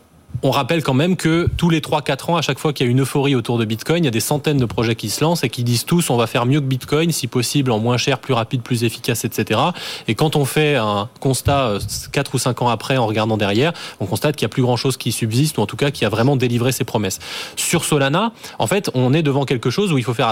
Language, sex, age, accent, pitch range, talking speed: French, male, 20-39, French, 115-145 Hz, 285 wpm